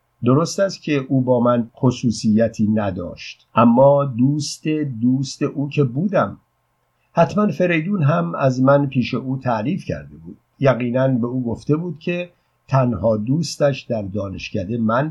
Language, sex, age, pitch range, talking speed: Persian, male, 50-69, 120-145 Hz, 140 wpm